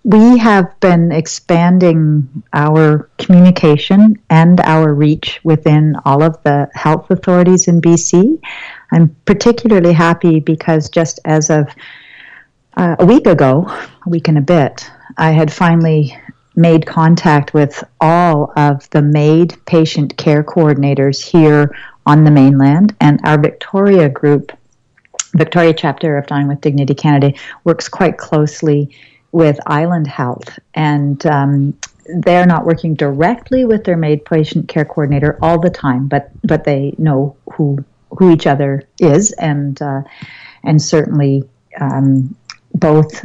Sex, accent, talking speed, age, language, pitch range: female, American, 135 wpm, 50-69, English, 145-170 Hz